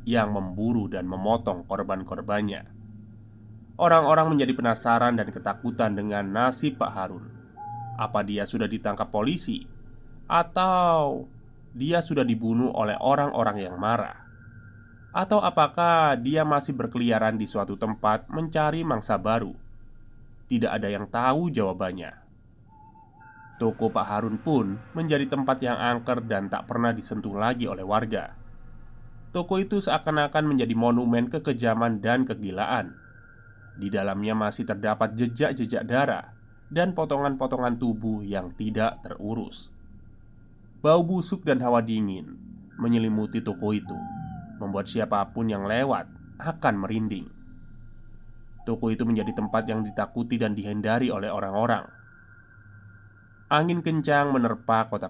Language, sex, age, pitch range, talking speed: Indonesian, male, 20-39, 110-130 Hz, 115 wpm